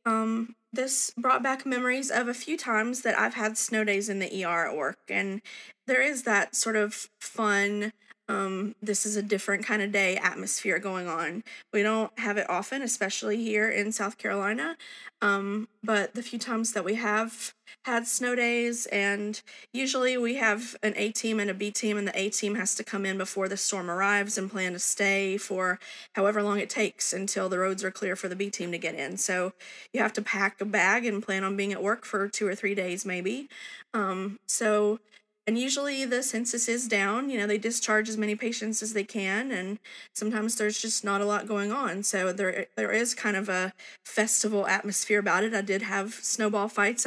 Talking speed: 210 wpm